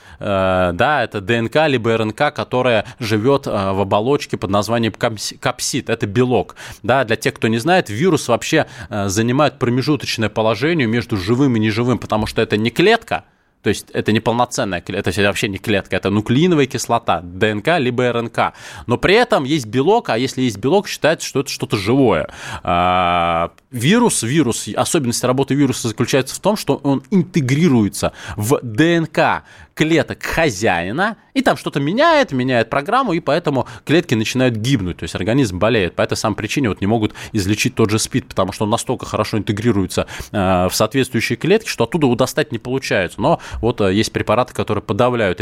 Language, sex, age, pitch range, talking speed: Russian, male, 20-39, 105-135 Hz, 165 wpm